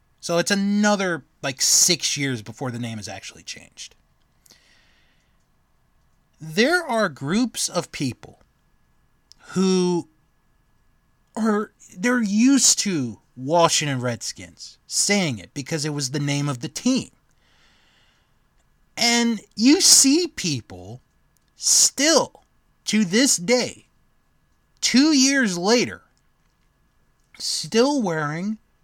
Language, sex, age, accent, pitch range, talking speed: English, male, 30-49, American, 155-230 Hz, 100 wpm